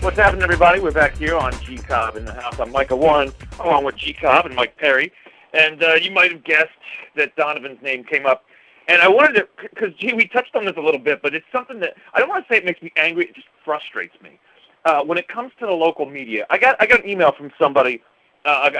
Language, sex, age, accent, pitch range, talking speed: English, male, 40-59, American, 150-220 Hz, 245 wpm